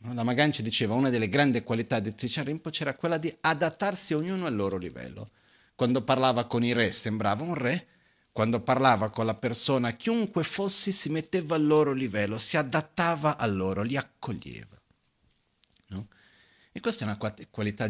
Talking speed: 175 wpm